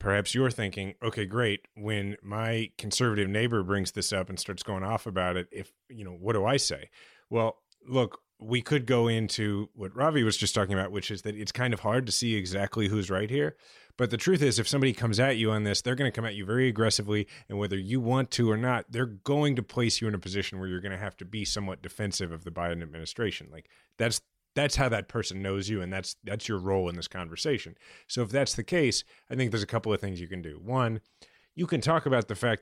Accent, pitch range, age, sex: American, 100-120 Hz, 30-49, male